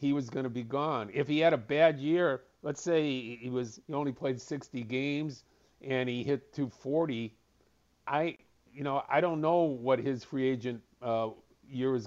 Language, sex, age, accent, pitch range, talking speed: English, male, 50-69, American, 115-140 Hz, 190 wpm